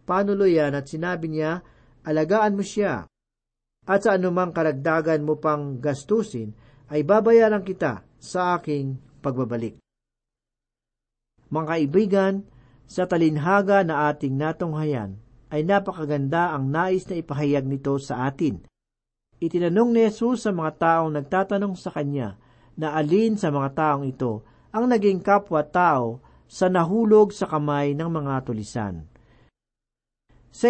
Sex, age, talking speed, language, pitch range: male, 50-69, 125 wpm, Filipino, 135-185 Hz